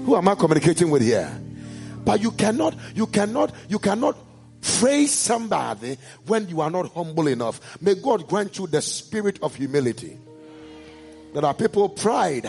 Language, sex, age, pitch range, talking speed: English, male, 50-69, 145-230 Hz, 160 wpm